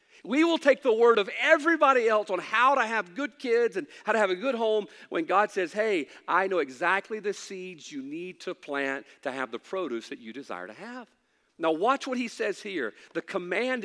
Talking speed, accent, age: 220 wpm, American, 50-69